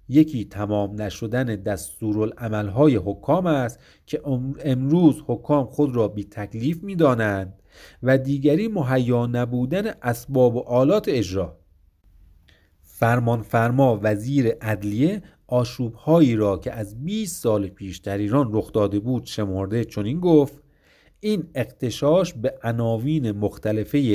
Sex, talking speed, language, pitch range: male, 120 wpm, Persian, 105-150 Hz